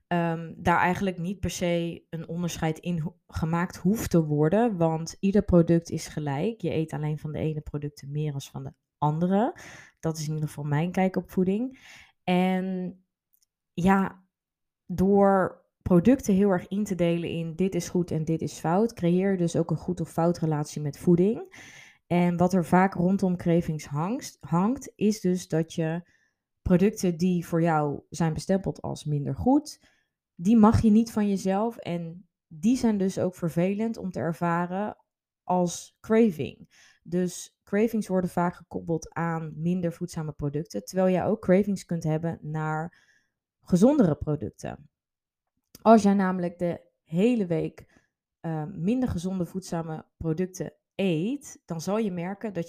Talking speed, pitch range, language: 155 wpm, 160-190 Hz, Dutch